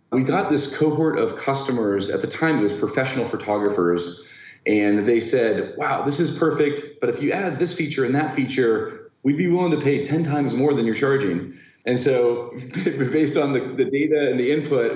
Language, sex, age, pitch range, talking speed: English, male, 30-49, 110-145 Hz, 200 wpm